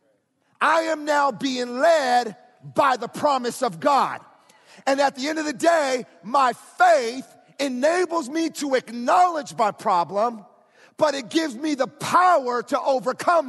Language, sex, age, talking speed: English, male, 40-59, 145 wpm